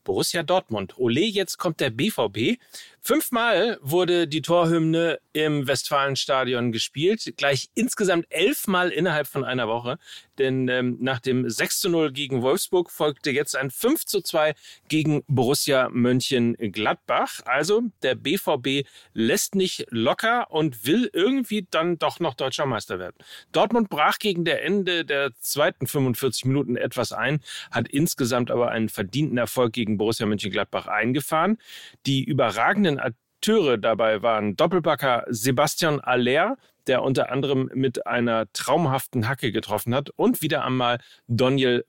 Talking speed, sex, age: 140 wpm, male, 40-59